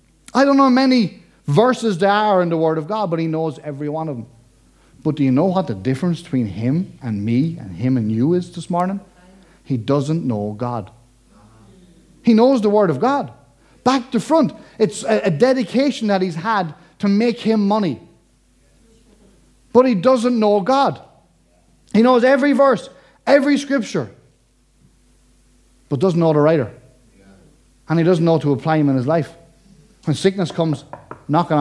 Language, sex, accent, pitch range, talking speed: English, male, Irish, 140-205 Hz, 175 wpm